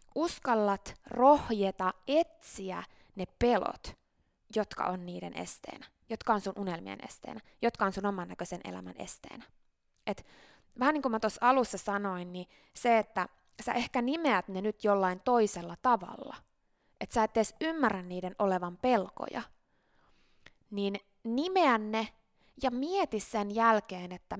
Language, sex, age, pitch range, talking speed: Finnish, female, 20-39, 185-250 Hz, 140 wpm